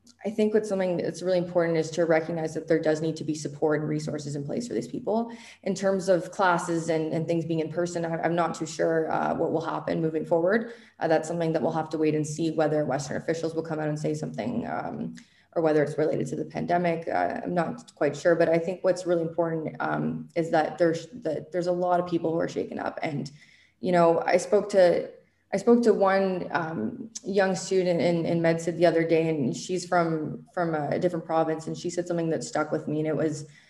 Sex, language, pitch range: female, English, 160-180 Hz